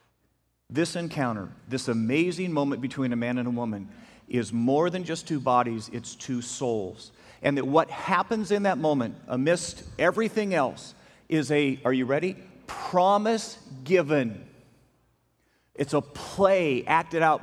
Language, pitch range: English, 125-160 Hz